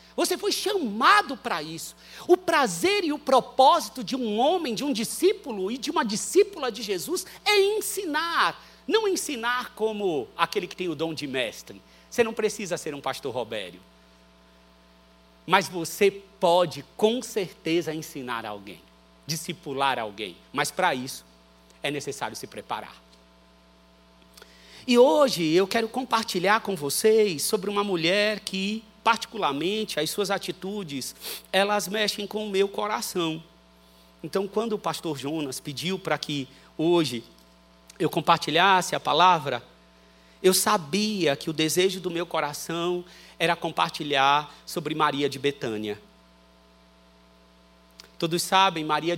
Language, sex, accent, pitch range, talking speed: Portuguese, male, Brazilian, 130-210 Hz, 130 wpm